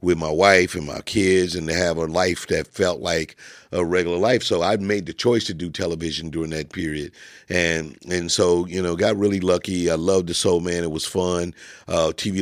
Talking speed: 220 wpm